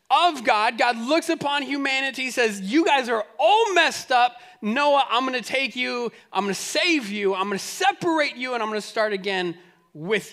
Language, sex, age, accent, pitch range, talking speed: English, male, 30-49, American, 220-315 Hz, 185 wpm